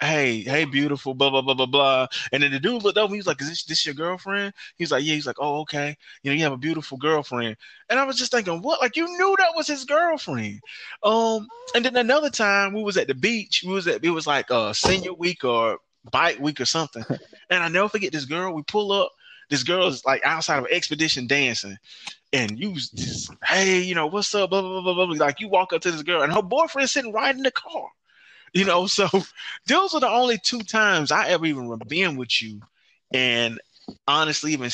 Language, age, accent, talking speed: English, 20-39, American, 240 wpm